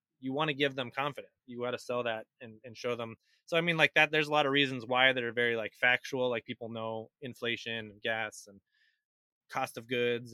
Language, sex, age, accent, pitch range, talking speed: English, male, 20-39, American, 120-140 Hz, 240 wpm